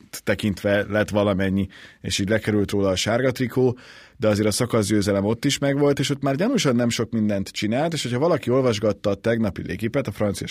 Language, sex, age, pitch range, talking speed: Hungarian, male, 30-49, 100-130 Hz, 195 wpm